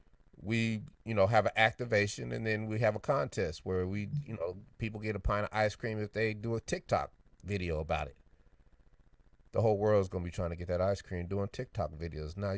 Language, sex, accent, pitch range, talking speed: English, male, American, 80-110 Hz, 225 wpm